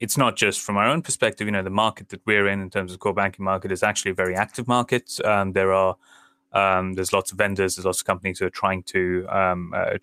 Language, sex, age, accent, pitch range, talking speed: English, male, 20-39, British, 95-105 Hz, 270 wpm